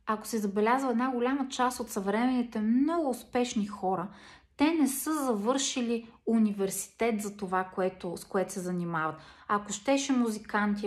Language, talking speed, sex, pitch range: Bulgarian, 145 wpm, female, 200-235 Hz